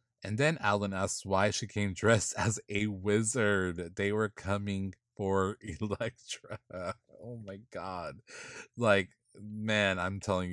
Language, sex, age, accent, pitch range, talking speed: English, male, 20-39, American, 90-110 Hz, 130 wpm